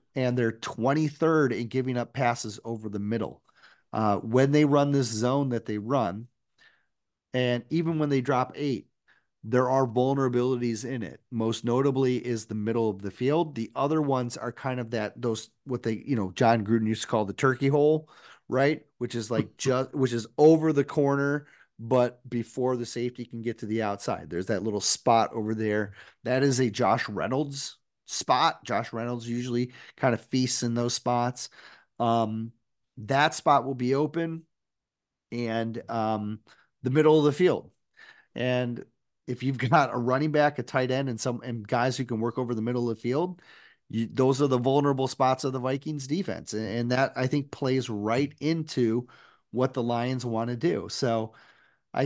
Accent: American